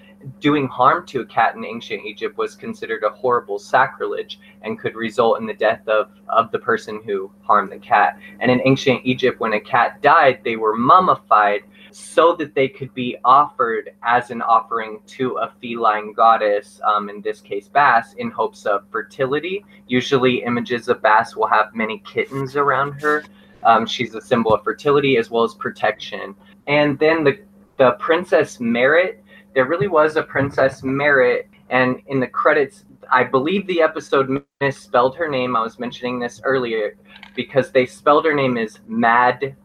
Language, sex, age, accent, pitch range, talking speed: English, male, 20-39, American, 125-190 Hz, 175 wpm